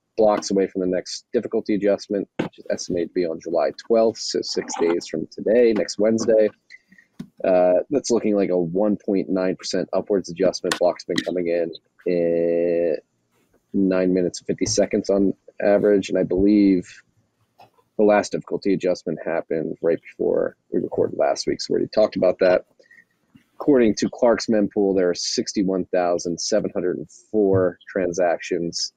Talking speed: 150 wpm